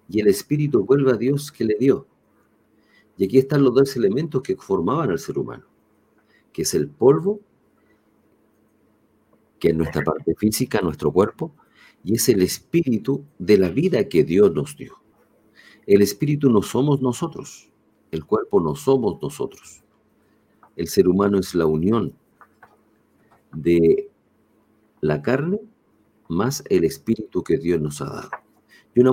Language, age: Spanish, 50-69